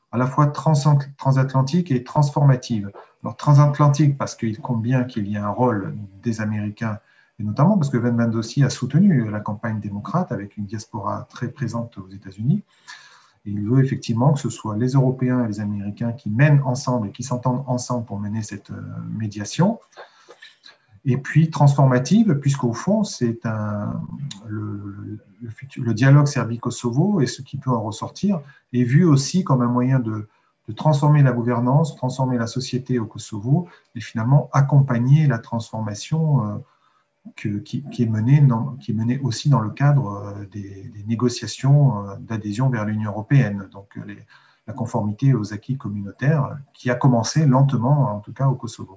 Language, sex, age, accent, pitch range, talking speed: French, male, 40-59, French, 110-140 Hz, 170 wpm